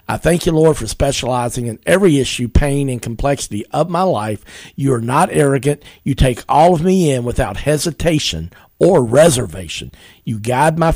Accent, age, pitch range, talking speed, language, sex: American, 50-69, 115-150 Hz, 175 wpm, English, male